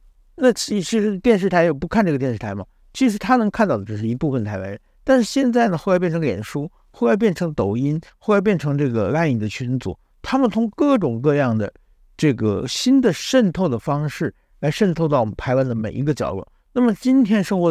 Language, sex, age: Chinese, male, 50-69